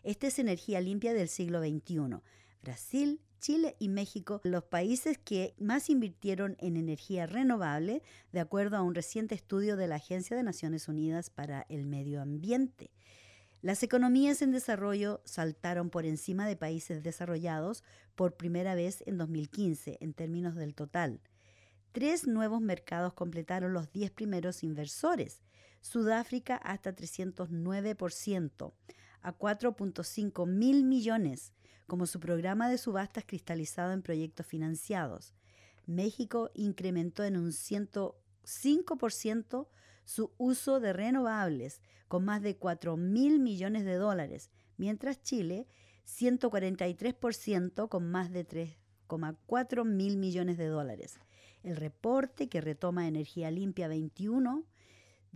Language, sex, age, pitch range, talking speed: English, female, 50-69, 160-220 Hz, 120 wpm